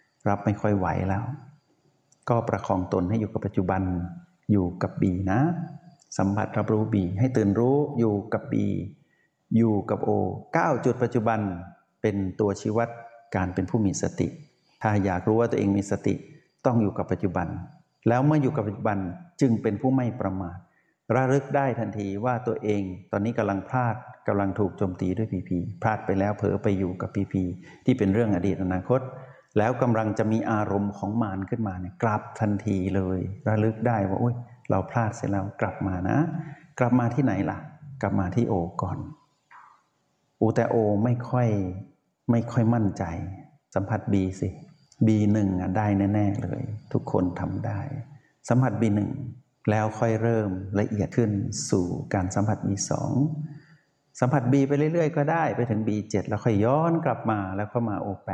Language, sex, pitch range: Thai, male, 100-125 Hz